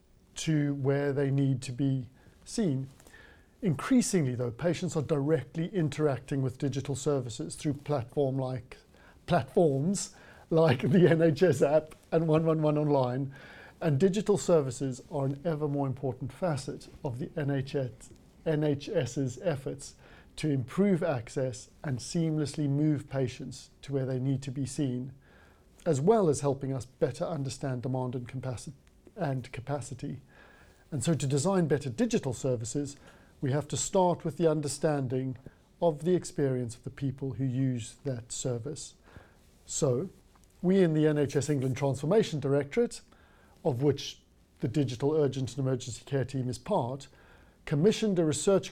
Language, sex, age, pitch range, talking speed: English, male, 50-69, 130-160 Hz, 135 wpm